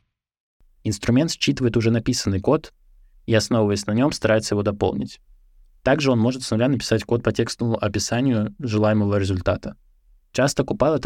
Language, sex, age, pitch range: Russian, male, 20-39, 100-120 Hz